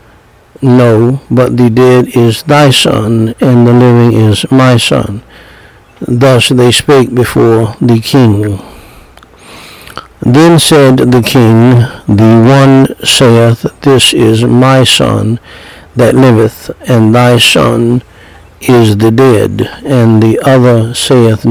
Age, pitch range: 60-79, 115-130 Hz